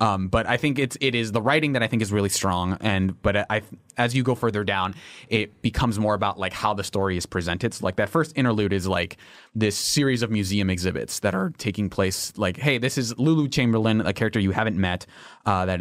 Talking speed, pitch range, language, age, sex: 240 wpm, 95-115 Hz, English, 20-39, male